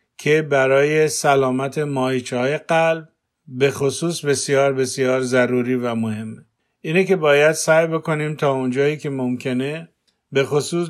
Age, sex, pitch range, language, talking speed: 50-69, male, 130-155 Hz, Persian, 125 wpm